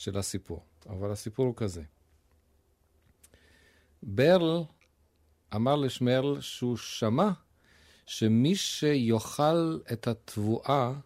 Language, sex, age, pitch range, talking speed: Hebrew, male, 40-59, 90-130 Hz, 80 wpm